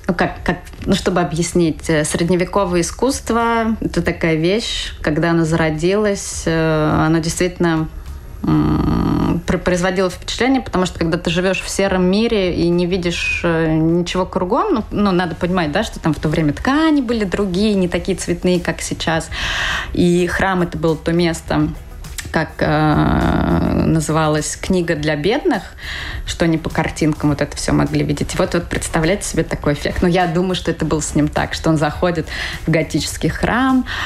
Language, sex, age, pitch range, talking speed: Russian, female, 20-39, 155-180 Hz, 165 wpm